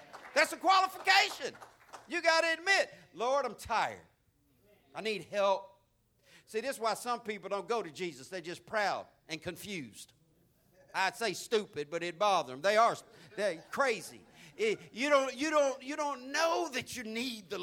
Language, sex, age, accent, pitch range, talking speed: English, male, 50-69, American, 190-275 Hz, 170 wpm